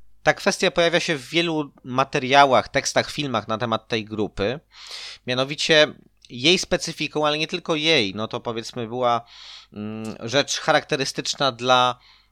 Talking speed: 130 wpm